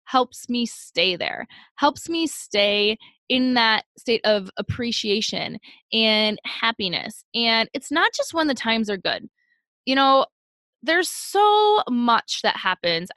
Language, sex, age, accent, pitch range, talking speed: English, female, 10-29, American, 220-285 Hz, 135 wpm